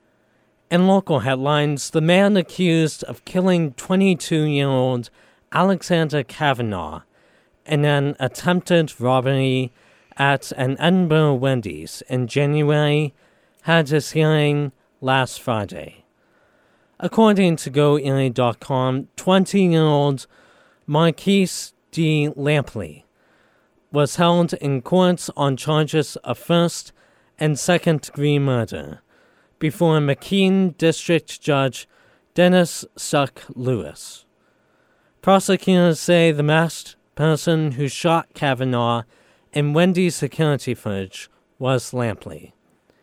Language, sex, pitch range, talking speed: English, male, 135-170 Hz, 90 wpm